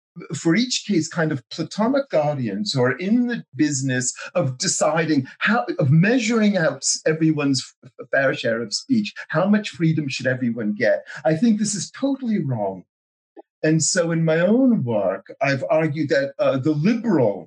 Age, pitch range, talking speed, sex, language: 40-59, 130-200 Hz, 160 wpm, male, English